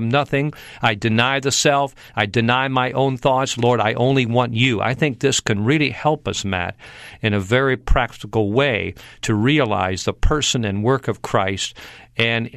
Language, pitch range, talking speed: English, 110-130 Hz, 175 wpm